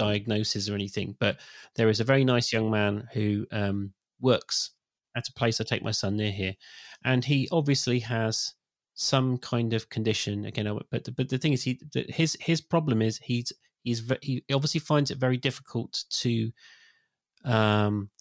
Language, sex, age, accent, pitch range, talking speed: English, male, 30-49, British, 110-140 Hz, 170 wpm